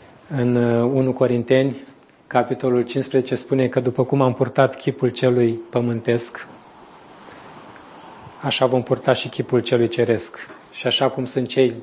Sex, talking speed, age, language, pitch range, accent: male, 130 wpm, 20-39, Romanian, 120-135 Hz, native